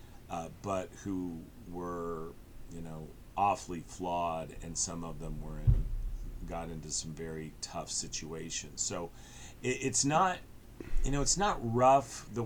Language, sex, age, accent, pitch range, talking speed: English, male, 40-59, American, 90-120 Hz, 130 wpm